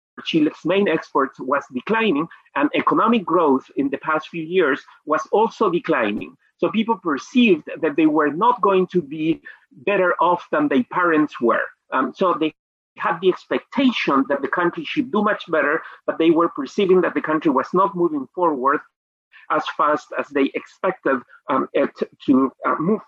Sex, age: male, 40-59